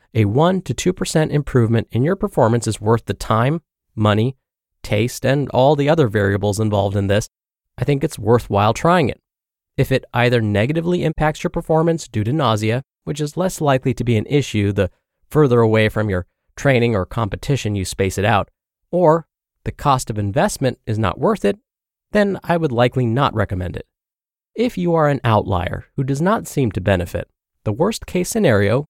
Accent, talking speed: American, 185 wpm